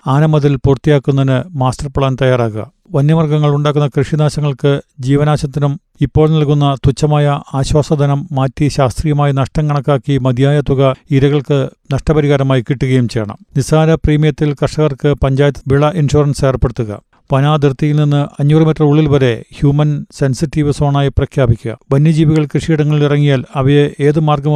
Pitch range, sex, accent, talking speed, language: 140-150 Hz, male, native, 110 wpm, Malayalam